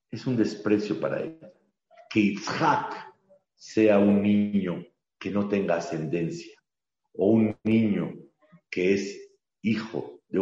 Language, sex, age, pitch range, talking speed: Spanish, male, 50-69, 100-125 Hz, 120 wpm